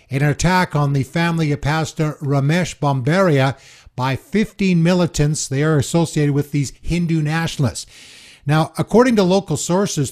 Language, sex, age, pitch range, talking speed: English, male, 60-79, 135-170 Hz, 140 wpm